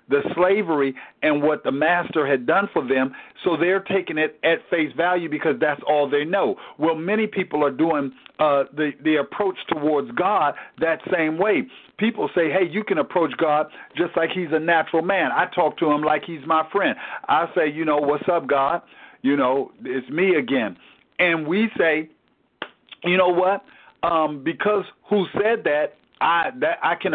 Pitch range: 150-195 Hz